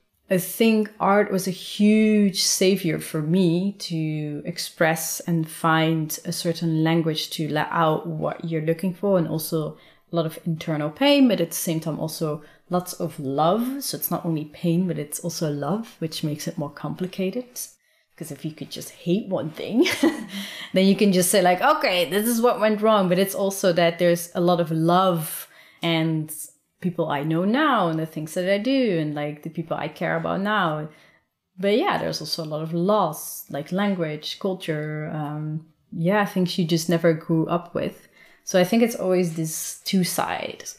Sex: female